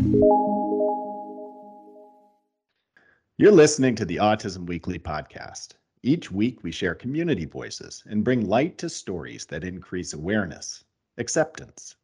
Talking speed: 110 wpm